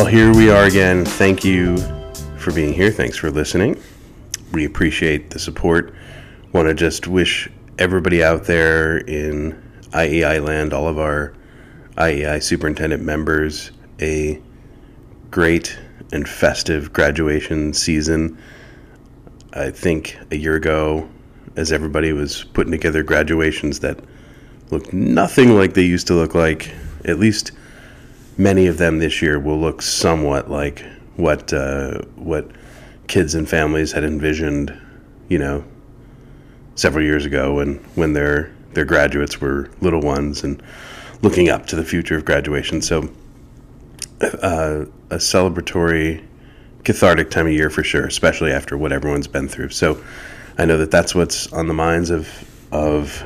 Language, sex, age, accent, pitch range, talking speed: English, male, 30-49, American, 75-85 Hz, 140 wpm